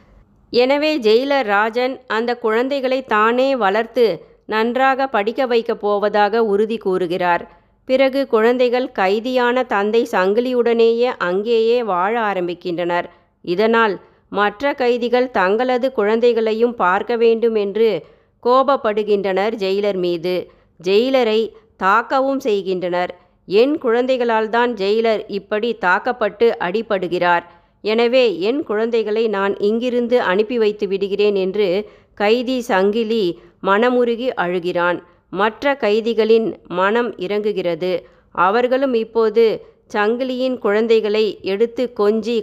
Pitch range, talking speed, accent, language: 200-245 Hz, 90 wpm, native, Tamil